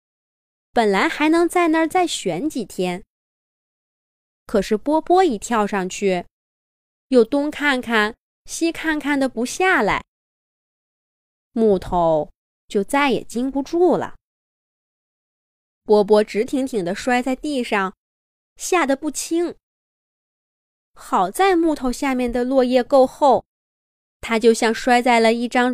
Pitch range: 205-305 Hz